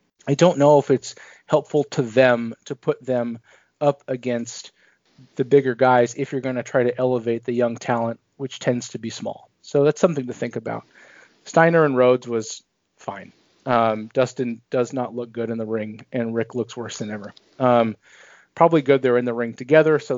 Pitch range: 120-135 Hz